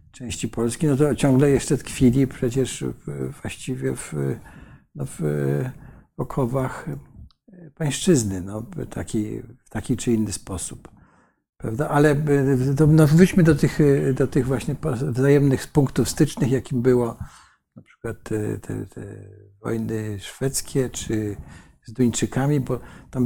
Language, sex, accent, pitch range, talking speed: Polish, male, native, 115-140 Hz, 125 wpm